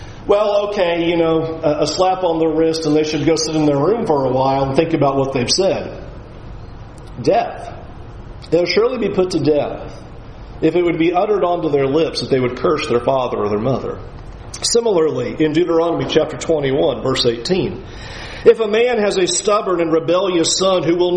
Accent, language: American, English